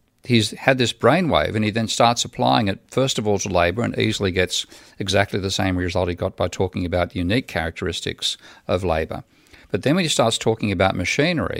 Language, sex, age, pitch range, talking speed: English, male, 50-69, 95-115 Hz, 205 wpm